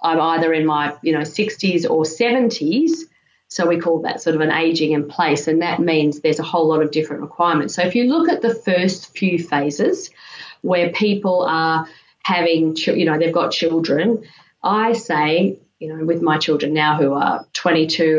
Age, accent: 30-49, Australian